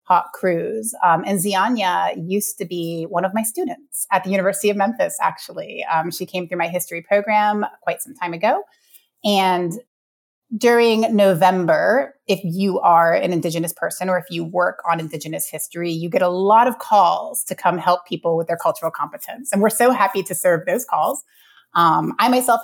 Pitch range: 170-210 Hz